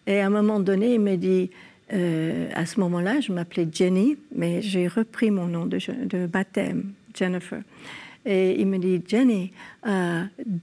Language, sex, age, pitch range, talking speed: French, female, 60-79, 190-240 Hz, 175 wpm